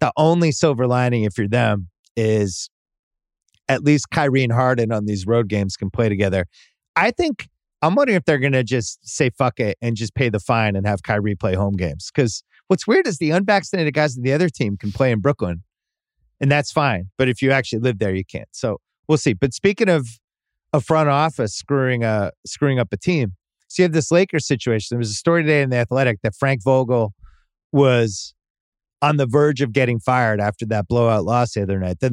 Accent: American